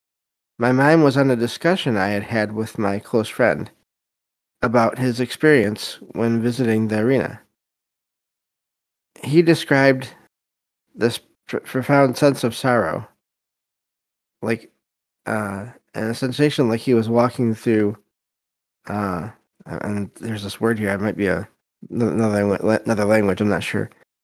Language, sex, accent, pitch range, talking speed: English, male, American, 105-125 Hz, 125 wpm